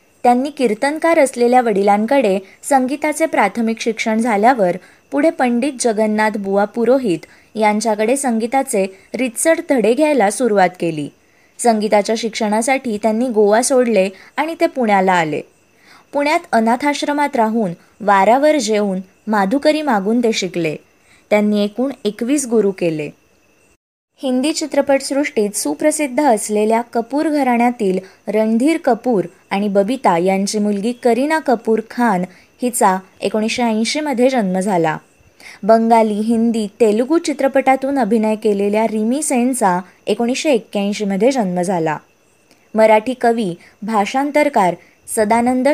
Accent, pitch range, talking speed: native, 205-265 Hz, 105 wpm